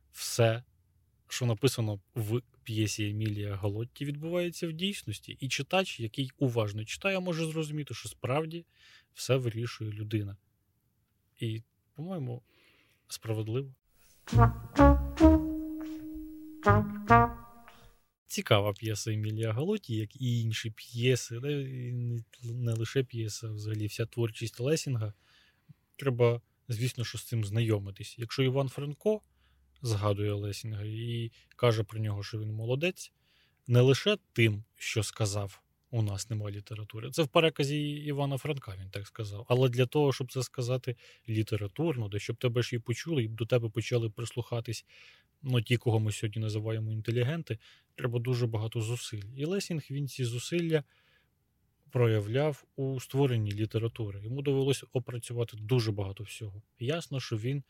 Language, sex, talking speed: Ukrainian, male, 130 wpm